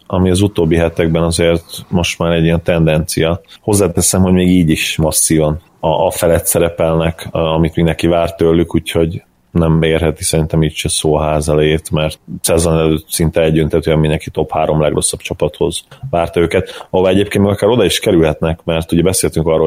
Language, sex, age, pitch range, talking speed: Hungarian, male, 30-49, 80-85 Hz, 175 wpm